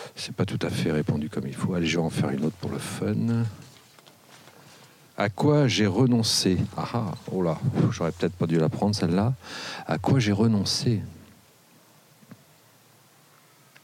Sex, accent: male, French